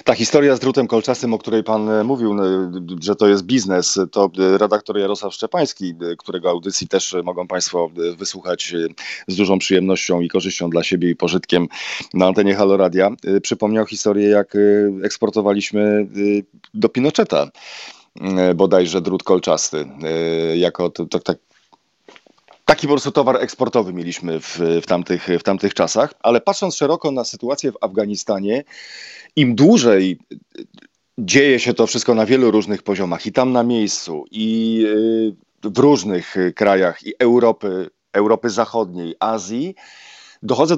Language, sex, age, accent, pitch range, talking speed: Polish, male, 40-59, native, 95-120 Hz, 130 wpm